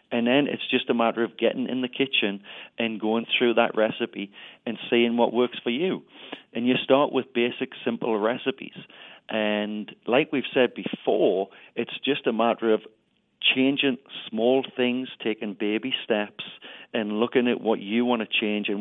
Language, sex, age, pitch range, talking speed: English, male, 40-59, 105-125 Hz, 170 wpm